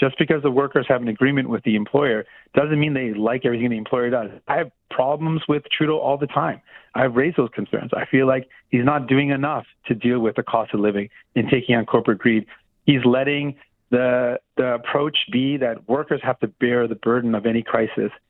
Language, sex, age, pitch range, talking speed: English, male, 40-59, 115-140 Hz, 215 wpm